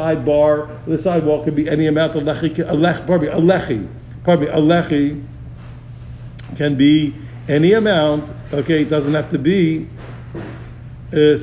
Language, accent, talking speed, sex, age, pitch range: English, American, 115 wpm, male, 60-79, 135-185 Hz